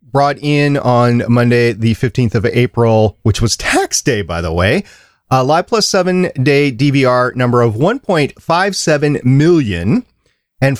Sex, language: male, English